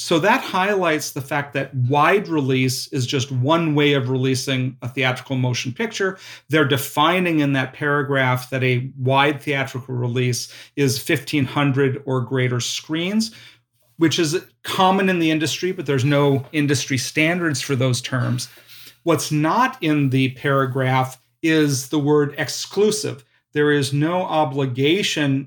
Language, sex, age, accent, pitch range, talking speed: English, male, 40-59, American, 130-155 Hz, 140 wpm